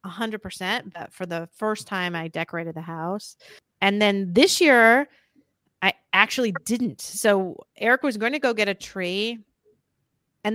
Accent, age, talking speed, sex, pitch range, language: American, 30-49, 150 wpm, female, 180-230 Hz, English